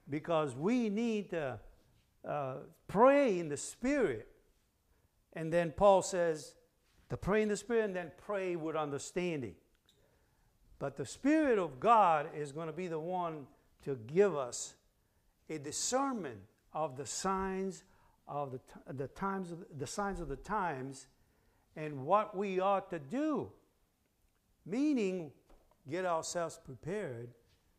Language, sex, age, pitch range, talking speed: English, male, 60-79, 130-185 Hz, 135 wpm